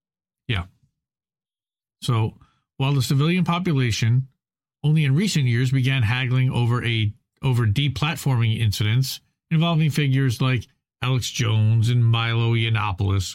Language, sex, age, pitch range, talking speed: English, male, 40-59, 120-155 Hz, 110 wpm